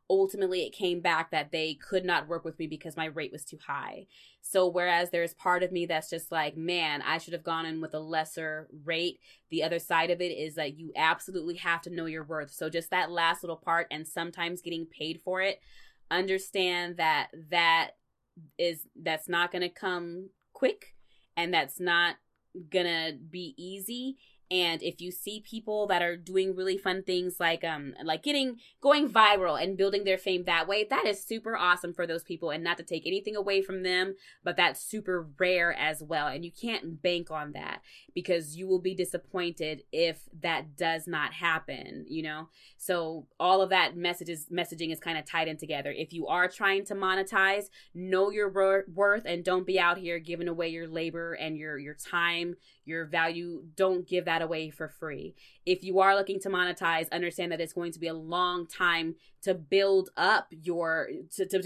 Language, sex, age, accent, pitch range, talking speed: English, female, 20-39, American, 165-190 Hz, 200 wpm